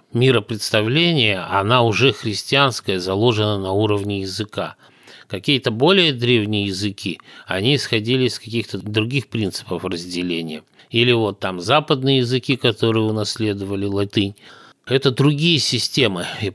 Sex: male